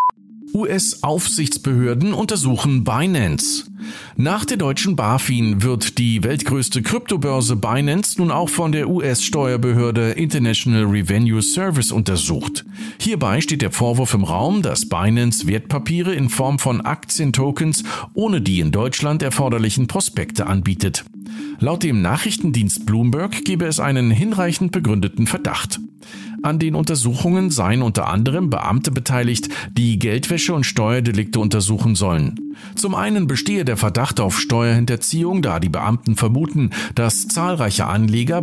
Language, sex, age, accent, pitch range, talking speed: German, male, 50-69, German, 110-160 Hz, 125 wpm